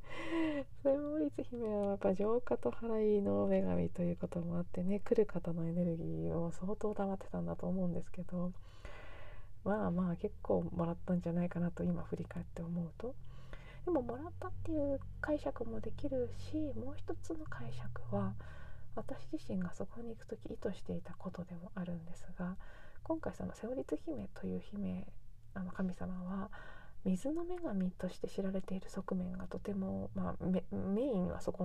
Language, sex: Japanese, female